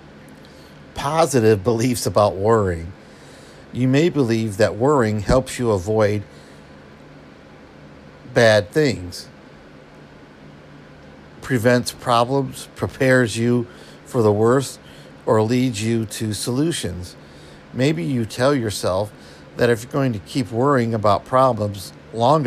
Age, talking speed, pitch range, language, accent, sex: 50-69, 105 wpm, 90-125 Hz, English, American, male